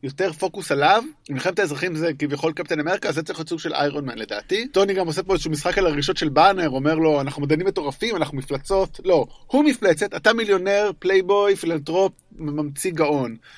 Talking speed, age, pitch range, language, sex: 190 wpm, 20-39, 145-195 Hz, Hebrew, male